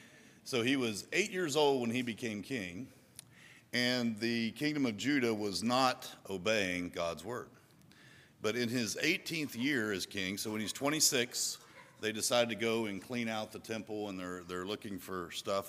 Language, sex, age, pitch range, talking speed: English, male, 50-69, 100-130 Hz, 175 wpm